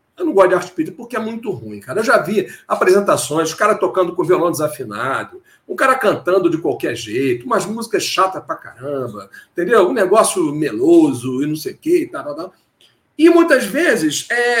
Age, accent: 50-69, Brazilian